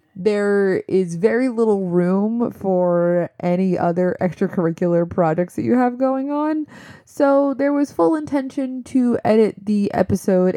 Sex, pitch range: female, 165-225 Hz